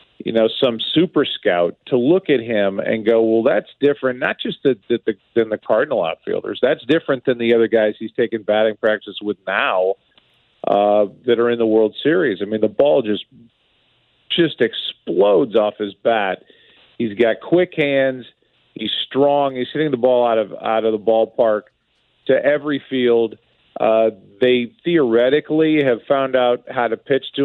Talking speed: 175 wpm